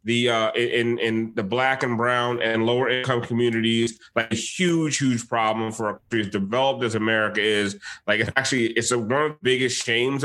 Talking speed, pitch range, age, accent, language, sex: 195 wpm, 120-155 Hz, 30-49, American, English, male